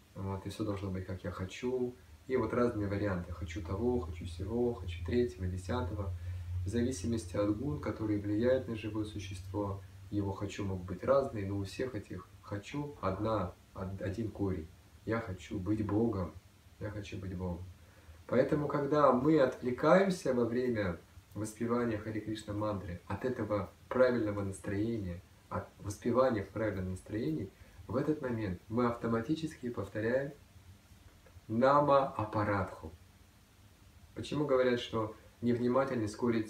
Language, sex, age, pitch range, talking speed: Russian, male, 20-39, 95-120 Hz, 130 wpm